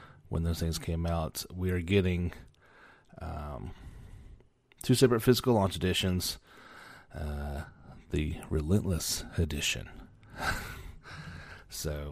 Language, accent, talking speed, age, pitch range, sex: English, American, 95 wpm, 30-49, 80-105 Hz, male